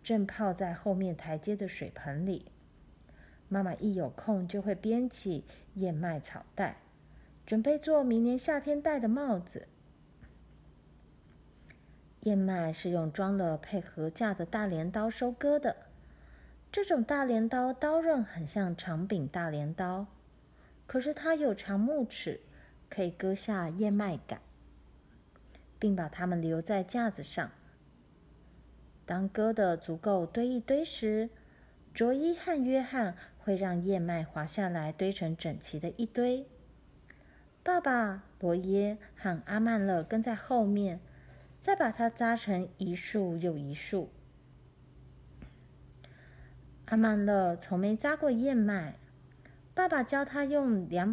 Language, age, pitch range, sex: Chinese, 50-69, 165-230 Hz, female